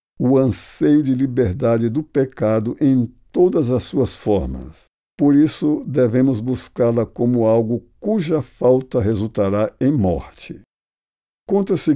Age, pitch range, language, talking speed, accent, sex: 60-79, 105-140 Hz, Portuguese, 115 wpm, Brazilian, male